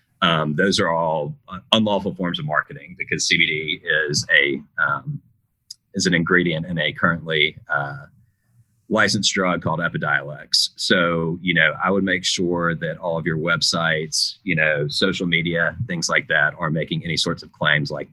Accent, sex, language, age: American, male, English, 30-49